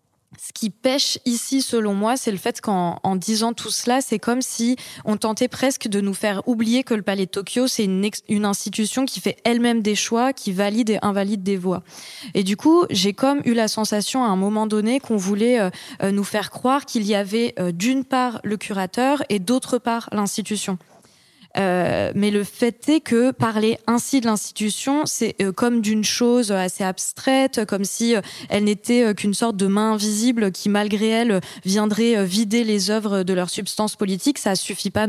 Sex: female